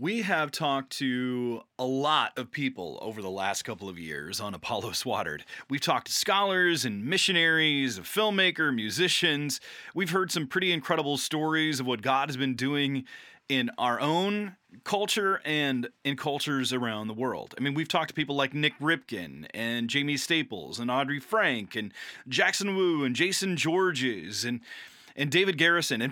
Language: English